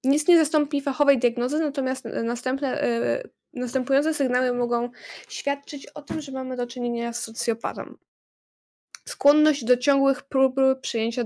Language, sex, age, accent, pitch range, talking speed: Polish, female, 10-29, native, 230-275 Hz, 130 wpm